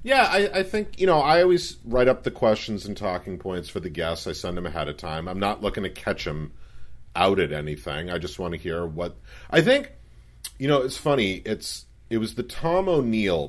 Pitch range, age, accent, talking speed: 80-120 Hz, 40-59, American, 225 wpm